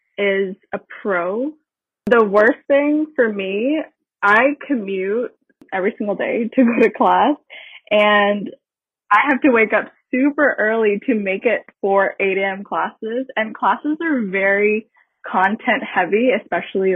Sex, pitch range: female, 195-245 Hz